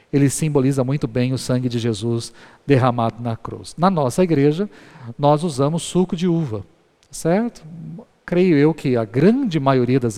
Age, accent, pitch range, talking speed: 40-59, Brazilian, 130-175 Hz, 160 wpm